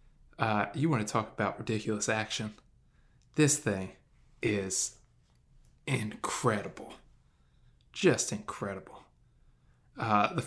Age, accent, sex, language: 20-39, American, male, English